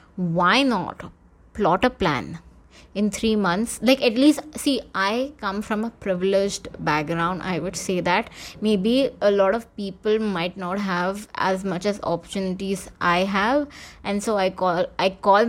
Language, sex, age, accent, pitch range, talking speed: Hindi, female, 20-39, native, 180-205 Hz, 165 wpm